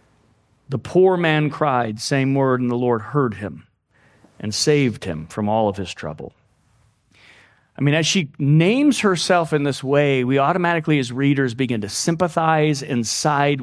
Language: English